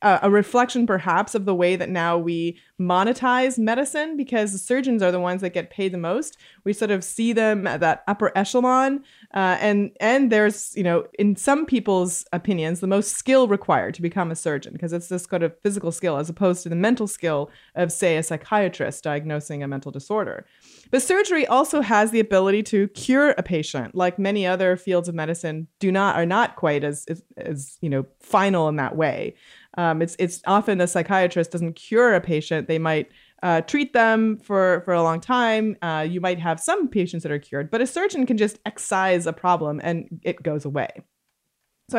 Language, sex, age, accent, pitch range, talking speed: English, female, 30-49, American, 170-230 Hz, 205 wpm